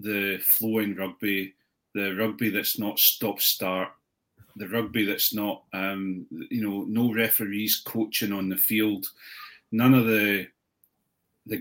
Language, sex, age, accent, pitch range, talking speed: English, male, 30-49, British, 100-115 Hz, 135 wpm